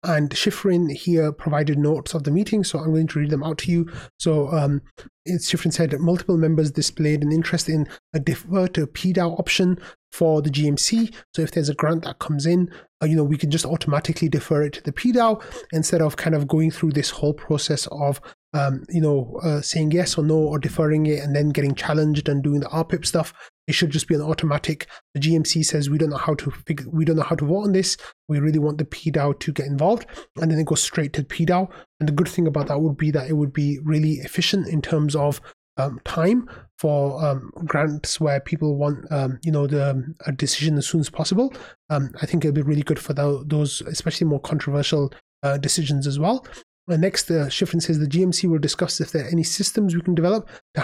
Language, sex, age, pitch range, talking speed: English, male, 30-49, 150-170 Hz, 230 wpm